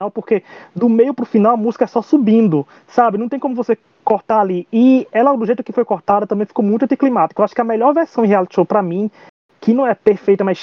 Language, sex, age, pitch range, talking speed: Portuguese, male, 20-39, 180-230 Hz, 250 wpm